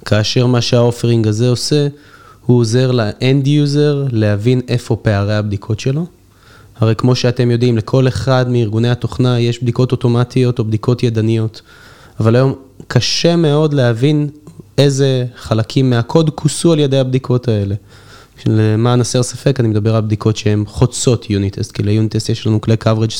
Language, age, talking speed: Hebrew, 20-39, 145 wpm